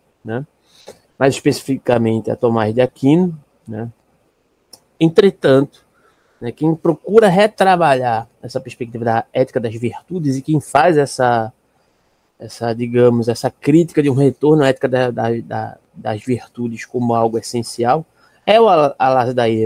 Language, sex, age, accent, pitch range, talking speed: Portuguese, male, 20-39, Brazilian, 120-145 Hz, 135 wpm